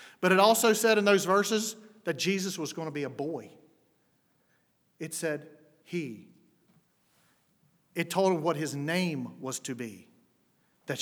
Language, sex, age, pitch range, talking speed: English, male, 40-59, 190-245 Hz, 150 wpm